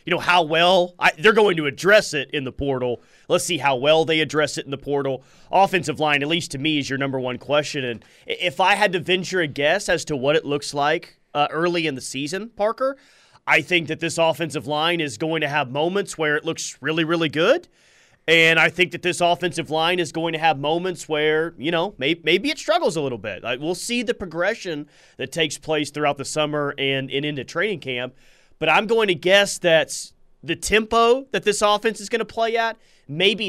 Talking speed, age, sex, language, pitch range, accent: 220 wpm, 30-49, male, English, 140-175 Hz, American